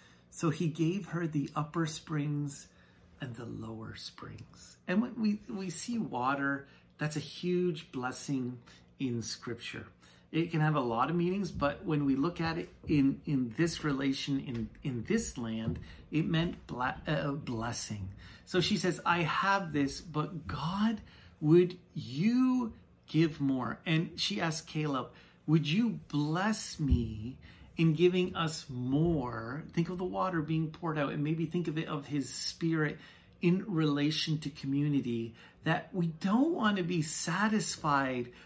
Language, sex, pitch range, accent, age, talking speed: English, male, 135-180 Hz, American, 40-59, 155 wpm